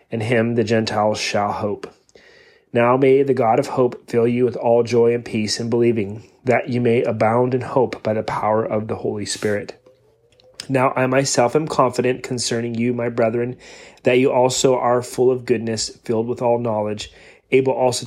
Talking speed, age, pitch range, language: 185 wpm, 30-49, 115-130 Hz, English